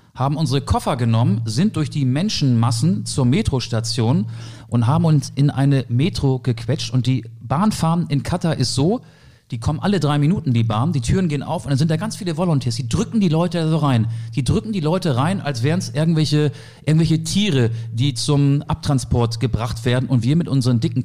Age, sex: 40-59, male